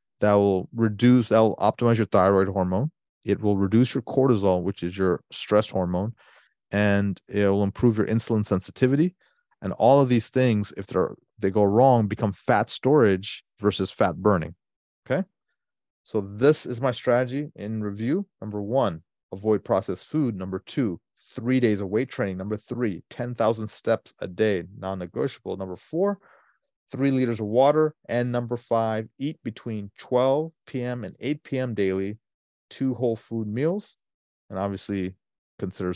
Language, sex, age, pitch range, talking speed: English, male, 30-49, 100-130 Hz, 155 wpm